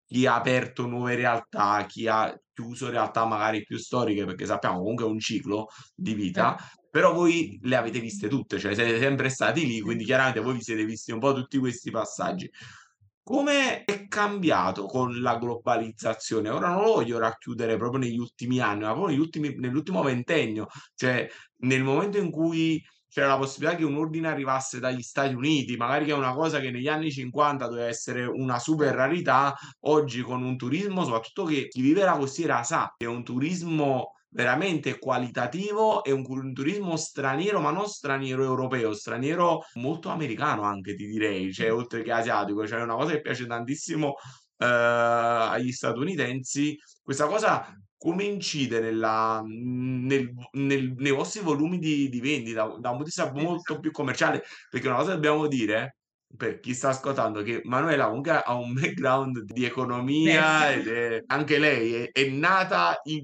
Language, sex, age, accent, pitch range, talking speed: Italian, male, 30-49, native, 120-150 Hz, 175 wpm